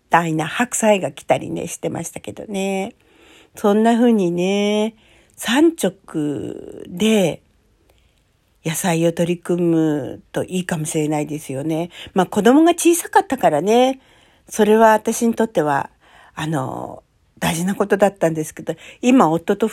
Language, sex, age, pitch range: Japanese, female, 50-69, 180-260 Hz